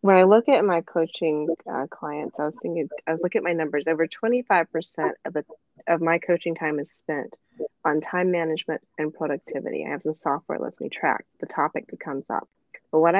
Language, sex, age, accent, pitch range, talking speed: English, female, 30-49, American, 170-220 Hz, 220 wpm